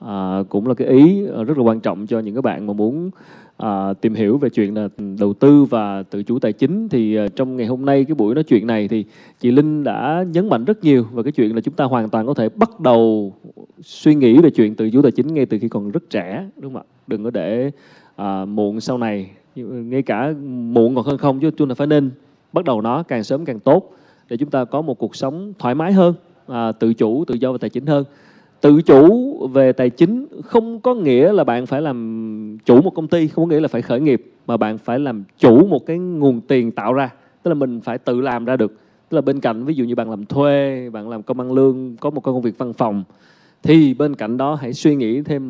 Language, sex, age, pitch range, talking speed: Vietnamese, male, 20-39, 115-145 Hz, 250 wpm